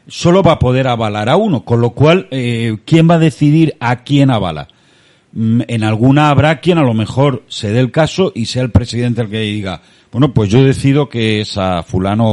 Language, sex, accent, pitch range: Spanish, male, Spanish, 110-145 Hz